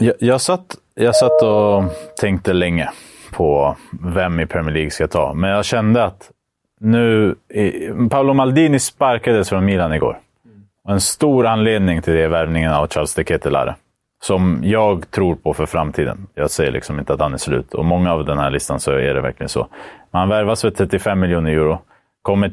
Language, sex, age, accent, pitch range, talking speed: Swedish, male, 30-49, Norwegian, 75-95 Hz, 190 wpm